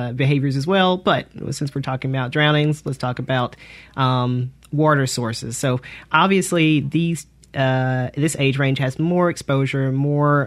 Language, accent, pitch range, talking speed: English, American, 130-145 Hz, 150 wpm